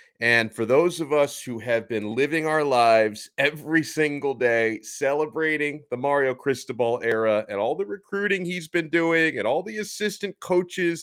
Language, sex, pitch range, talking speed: English, male, 105-155 Hz, 170 wpm